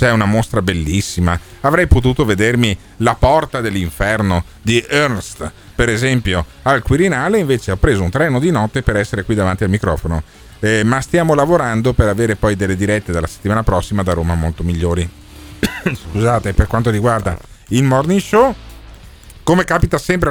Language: Italian